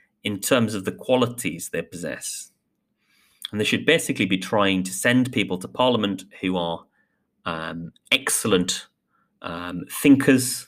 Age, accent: 30-49, British